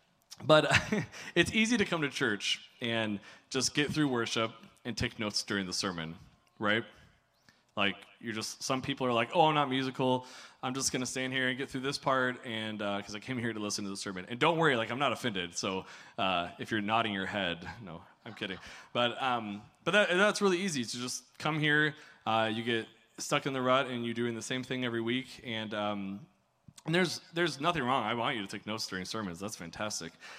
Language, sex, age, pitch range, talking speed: English, male, 20-39, 105-135 Hz, 225 wpm